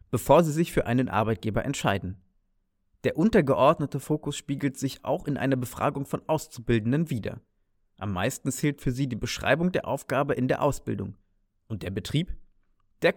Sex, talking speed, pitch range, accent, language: male, 160 wpm, 100-145 Hz, German, German